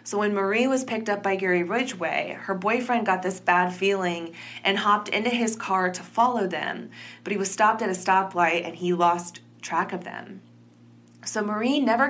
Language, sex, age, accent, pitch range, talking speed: English, female, 20-39, American, 180-225 Hz, 195 wpm